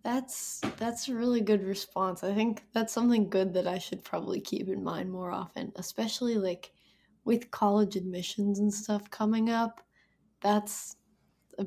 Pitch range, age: 195-240 Hz, 10-29